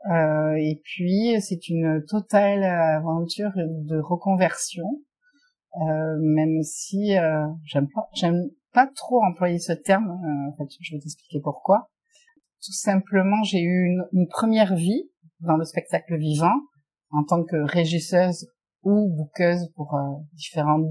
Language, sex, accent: French, female, French